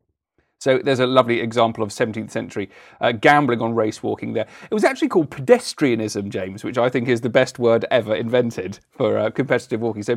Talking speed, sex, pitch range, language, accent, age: 200 wpm, male, 120-170 Hz, English, British, 40-59